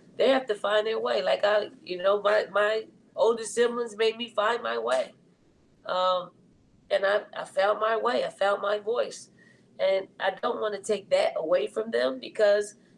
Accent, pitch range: American, 180-210 Hz